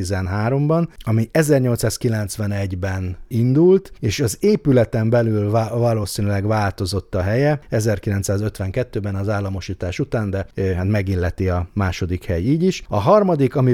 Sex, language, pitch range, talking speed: male, Hungarian, 95-115 Hz, 120 wpm